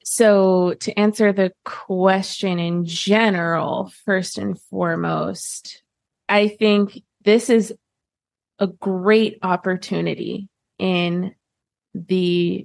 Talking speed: 90 wpm